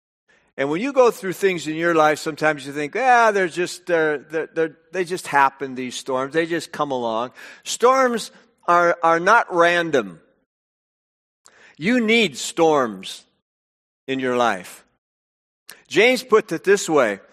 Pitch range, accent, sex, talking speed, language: 155-210 Hz, American, male, 150 wpm, English